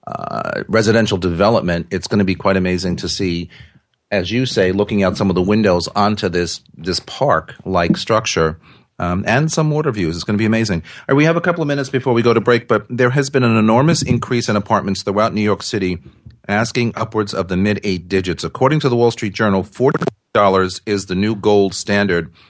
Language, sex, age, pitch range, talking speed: English, male, 40-59, 95-125 Hz, 210 wpm